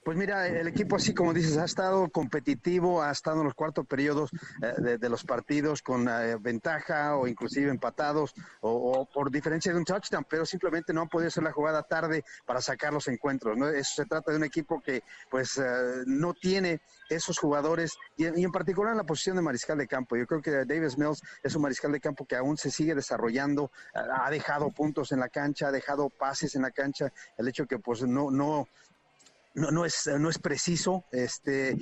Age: 40-59